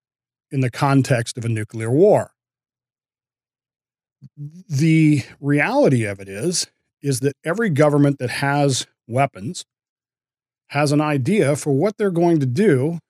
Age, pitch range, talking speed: 40-59, 125-150 Hz, 130 wpm